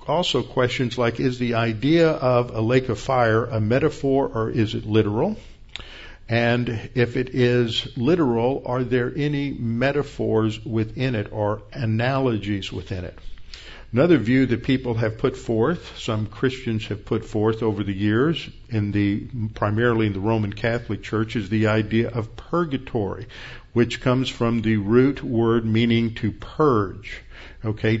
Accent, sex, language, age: American, male, English, 50-69